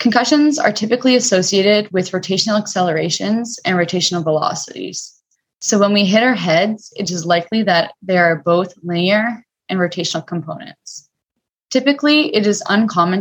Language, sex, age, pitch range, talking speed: English, female, 20-39, 170-205 Hz, 140 wpm